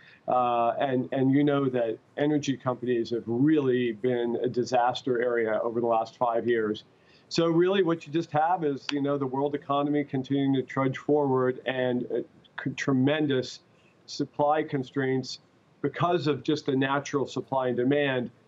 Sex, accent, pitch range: male, American, 125-150 Hz